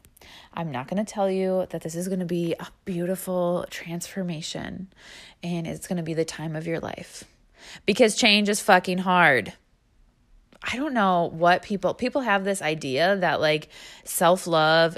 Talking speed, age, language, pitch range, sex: 170 wpm, 20-39, English, 165-195 Hz, female